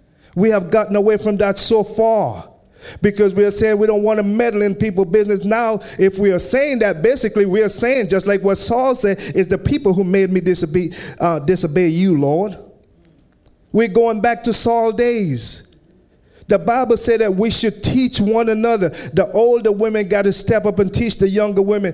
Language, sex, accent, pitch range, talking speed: English, male, American, 190-225 Hz, 200 wpm